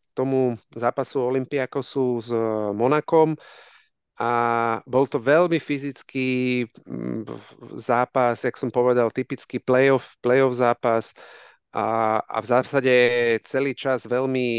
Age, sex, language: 40-59, male, Slovak